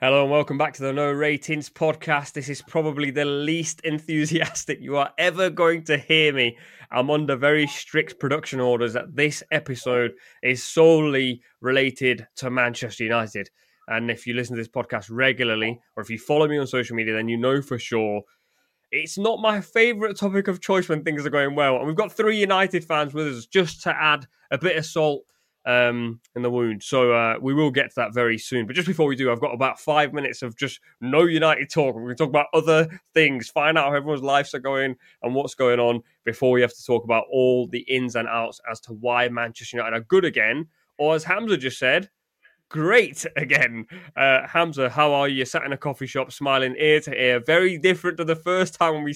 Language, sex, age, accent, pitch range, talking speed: English, male, 20-39, British, 125-155 Hz, 215 wpm